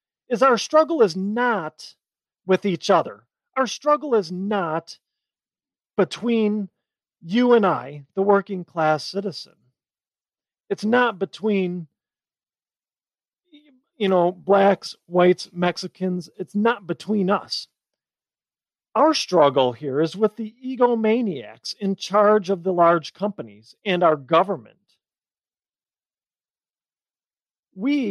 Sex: male